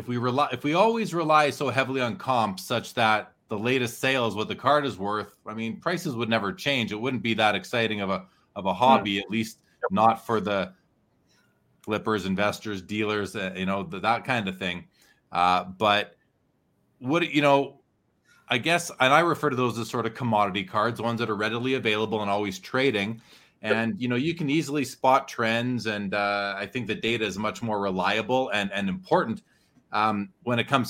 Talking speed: 195 wpm